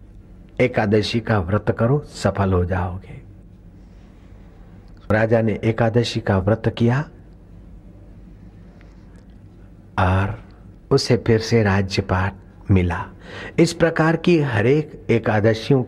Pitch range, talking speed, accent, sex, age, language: 95-135 Hz, 95 wpm, native, male, 60-79, Hindi